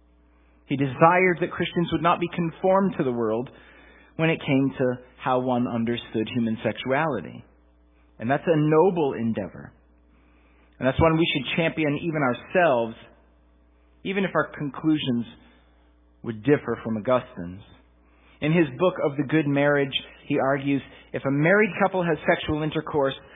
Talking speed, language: 145 wpm, English